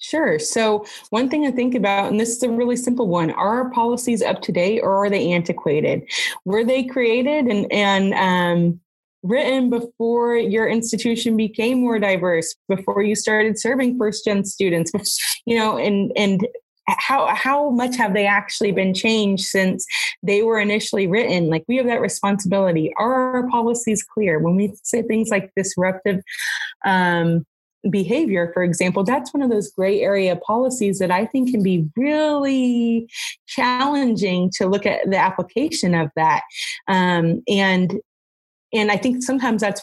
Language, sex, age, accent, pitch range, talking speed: English, female, 20-39, American, 185-245 Hz, 165 wpm